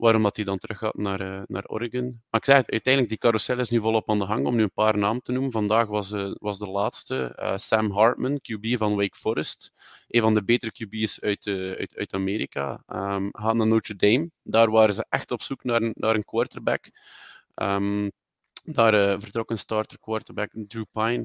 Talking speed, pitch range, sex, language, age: 215 wpm, 100-115 Hz, male, Dutch, 20-39